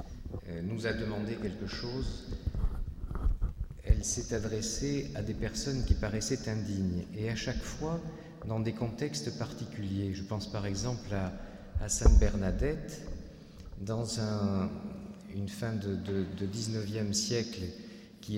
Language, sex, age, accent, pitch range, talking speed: French, male, 50-69, French, 95-110 Hz, 120 wpm